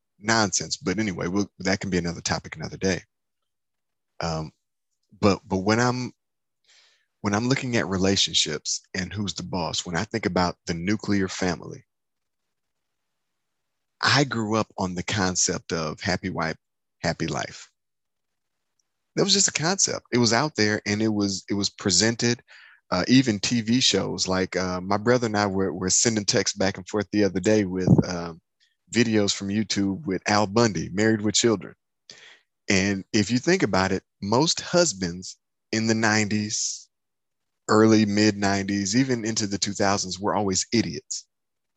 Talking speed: 160 wpm